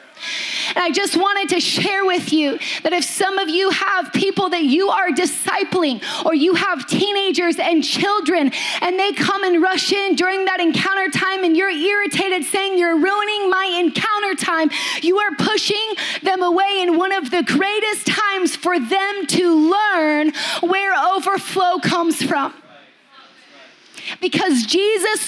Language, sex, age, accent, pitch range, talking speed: English, female, 30-49, American, 320-385 Hz, 155 wpm